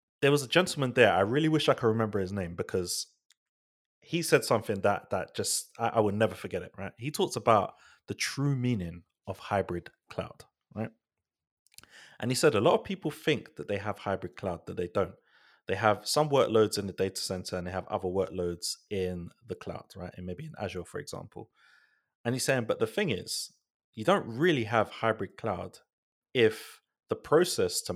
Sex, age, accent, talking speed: male, 30-49, British, 200 wpm